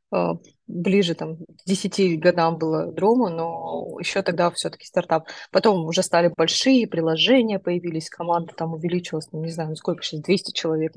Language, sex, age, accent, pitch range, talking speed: Russian, female, 20-39, native, 170-205 Hz, 150 wpm